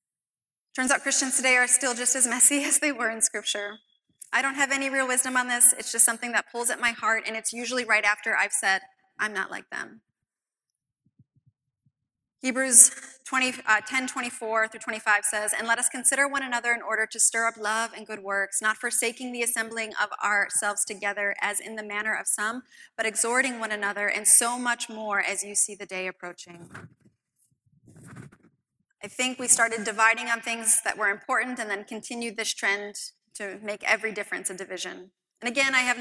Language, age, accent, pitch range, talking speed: English, 20-39, American, 205-255 Hz, 190 wpm